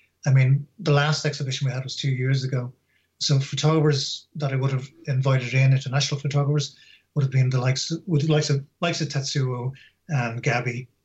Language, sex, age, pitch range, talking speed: English, male, 30-49, 125-140 Hz, 190 wpm